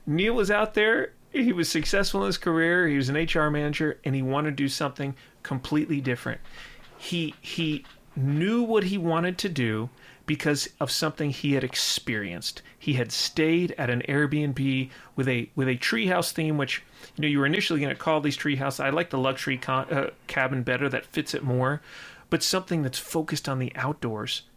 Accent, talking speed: American, 195 wpm